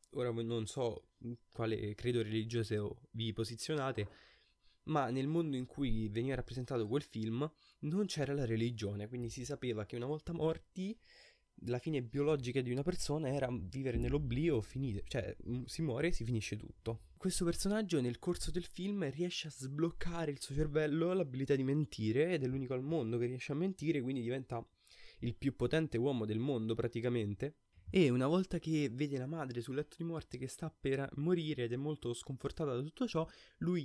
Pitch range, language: 115-150 Hz, Italian